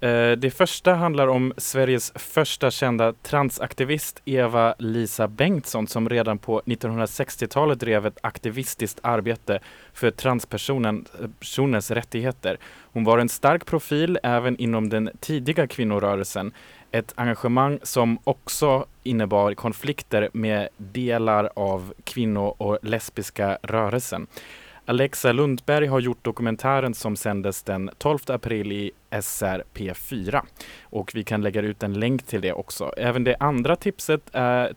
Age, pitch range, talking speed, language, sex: 20-39, 105-130 Hz, 125 wpm, Swedish, male